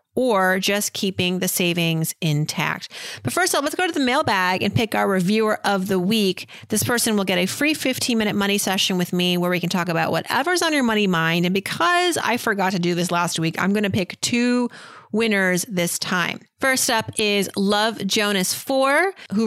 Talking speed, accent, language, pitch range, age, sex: 205 wpm, American, English, 175-230 Hz, 30-49, female